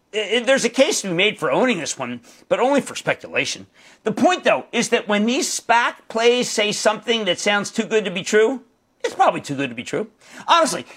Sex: male